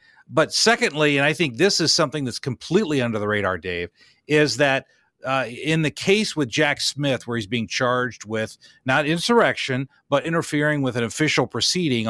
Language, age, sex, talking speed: English, 40-59, male, 180 wpm